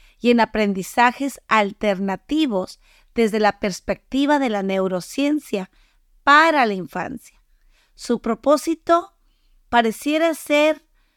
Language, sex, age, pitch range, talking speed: English, female, 40-59, 205-265 Hz, 90 wpm